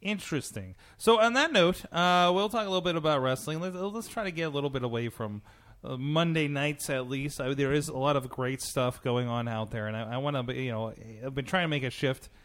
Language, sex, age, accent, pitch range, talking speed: English, male, 30-49, American, 125-165 Hz, 255 wpm